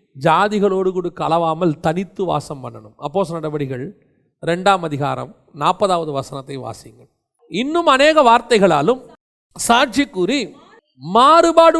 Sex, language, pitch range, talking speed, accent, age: male, Tamil, 180-255 Hz, 90 wpm, native, 40-59